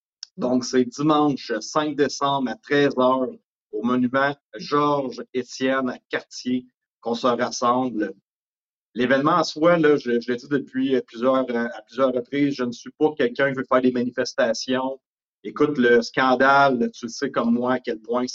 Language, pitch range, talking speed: English, 120-140 Hz, 165 wpm